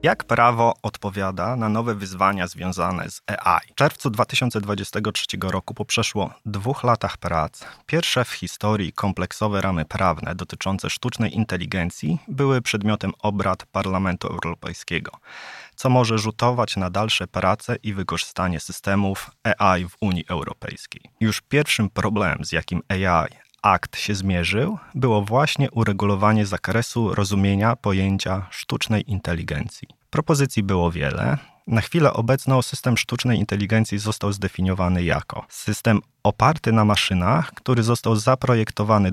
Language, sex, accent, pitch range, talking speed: Polish, male, native, 95-115 Hz, 125 wpm